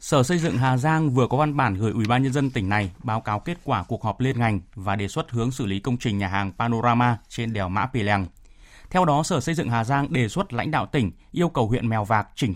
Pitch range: 110-145 Hz